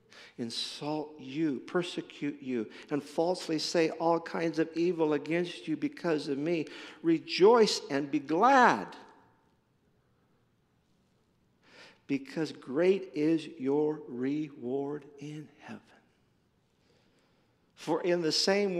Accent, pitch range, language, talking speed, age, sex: American, 150-195 Hz, English, 100 wpm, 50-69, male